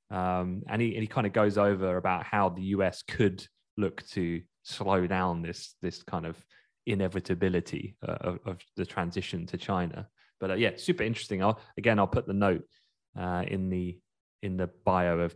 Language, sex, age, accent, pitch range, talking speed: English, male, 20-39, British, 90-110 Hz, 190 wpm